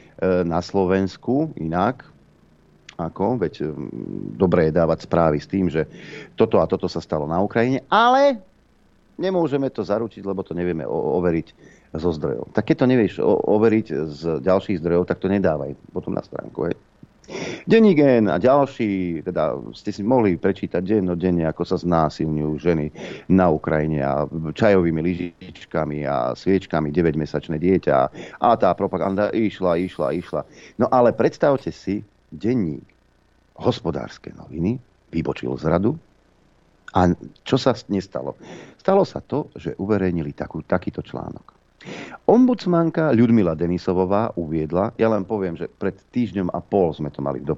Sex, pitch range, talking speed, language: male, 85-105 Hz, 140 wpm, Slovak